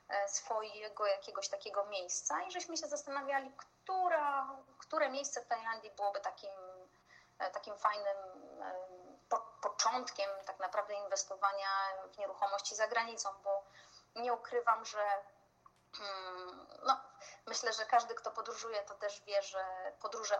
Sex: female